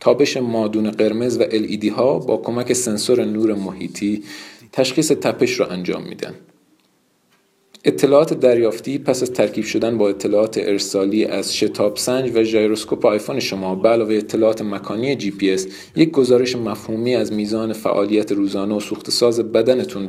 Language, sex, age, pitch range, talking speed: Persian, male, 40-59, 95-120 Hz, 140 wpm